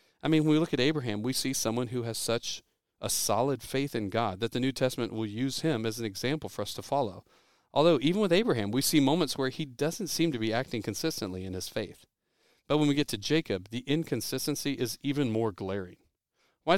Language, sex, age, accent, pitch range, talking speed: English, male, 40-59, American, 115-155 Hz, 225 wpm